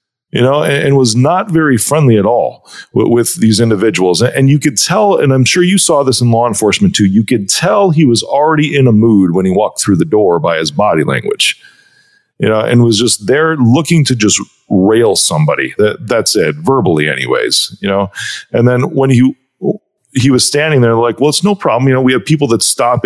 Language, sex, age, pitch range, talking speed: English, male, 40-59, 105-150 Hz, 215 wpm